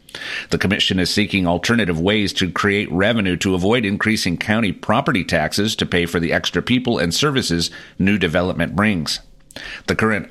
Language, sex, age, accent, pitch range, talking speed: English, male, 40-59, American, 90-115 Hz, 165 wpm